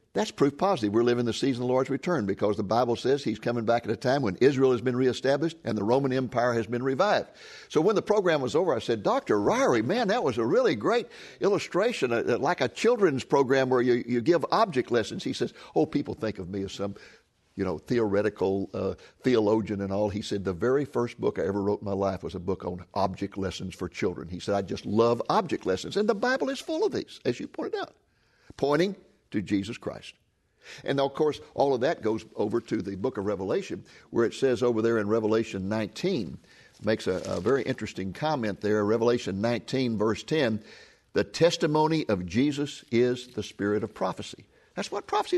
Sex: male